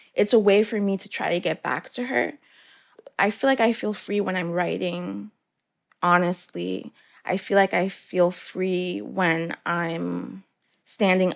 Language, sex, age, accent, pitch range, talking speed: English, female, 20-39, American, 170-195 Hz, 165 wpm